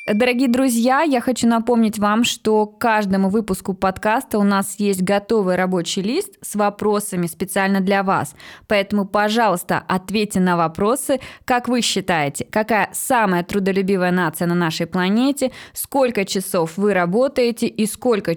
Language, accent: Russian, native